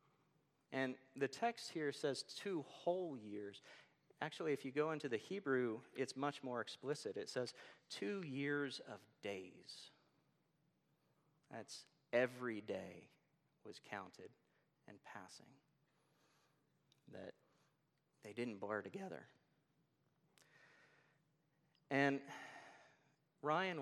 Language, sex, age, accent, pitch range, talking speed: English, male, 40-59, American, 125-155 Hz, 100 wpm